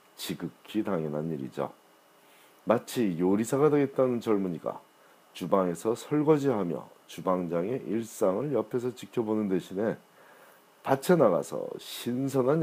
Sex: male